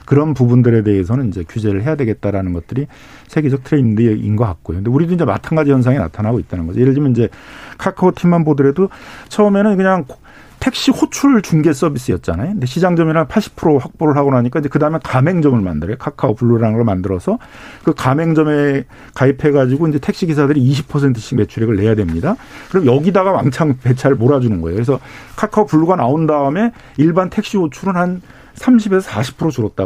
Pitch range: 110-160 Hz